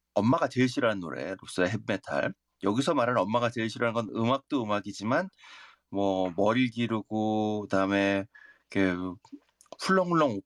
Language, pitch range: Korean, 105-155 Hz